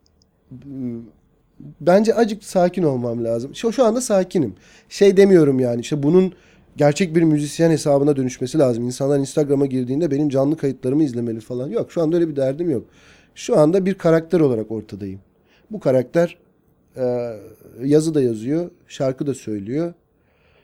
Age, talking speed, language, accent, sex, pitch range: 40-59, 140 wpm, Turkish, native, male, 120-175 Hz